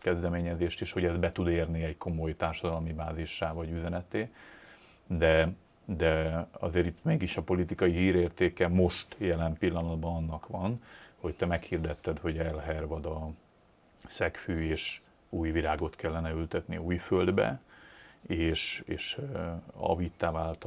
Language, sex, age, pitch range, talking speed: Hungarian, male, 40-59, 80-90 Hz, 130 wpm